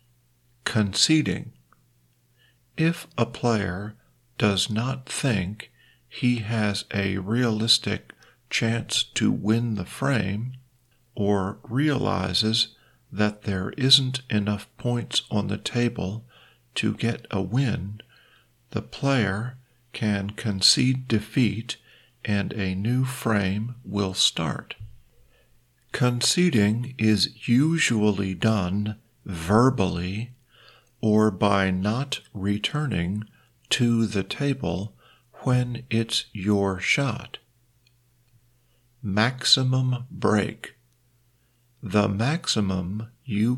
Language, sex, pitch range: Thai, male, 105-125 Hz